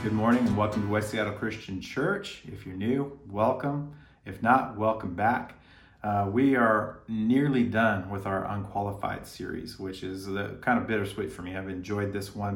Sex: male